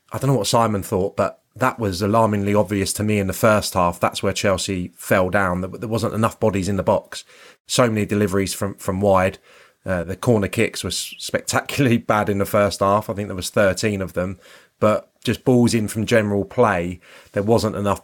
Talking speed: 210 wpm